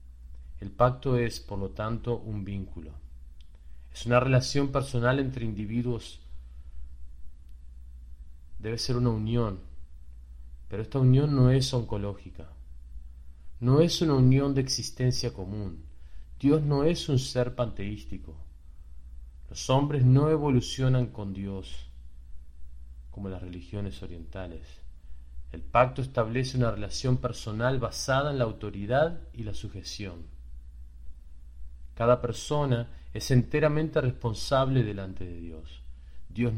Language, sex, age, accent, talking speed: English, male, 40-59, Argentinian, 115 wpm